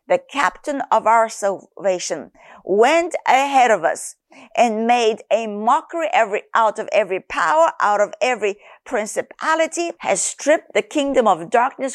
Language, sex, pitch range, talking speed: English, female, 200-280 Hz, 135 wpm